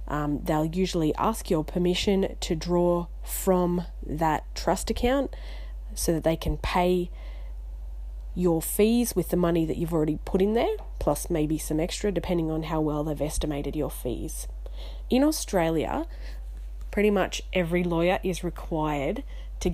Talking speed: 145 wpm